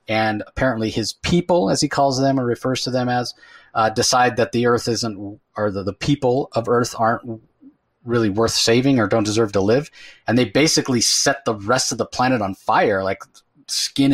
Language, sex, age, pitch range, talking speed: English, male, 30-49, 110-135 Hz, 200 wpm